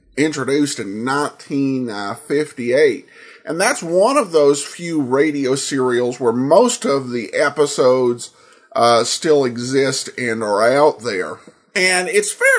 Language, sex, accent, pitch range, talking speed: English, male, American, 125-175 Hz, 125 wpm